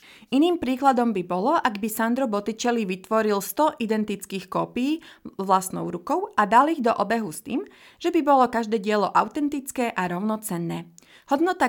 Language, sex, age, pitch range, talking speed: Slovak, female, 30-49, 190-265 Hz, 155 wpm